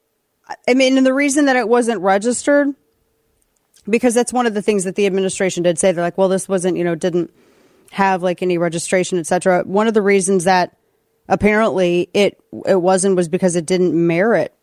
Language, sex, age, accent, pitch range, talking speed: English, female, 30-49, American, 165-200 Hz, 195 wpm